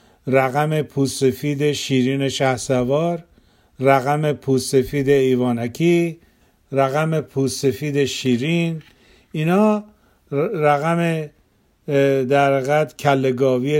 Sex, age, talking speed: male, 50-69, 70 wpm